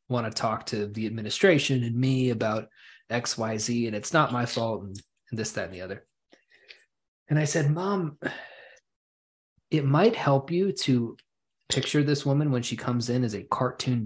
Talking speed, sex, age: 170 wpm, male, 20-39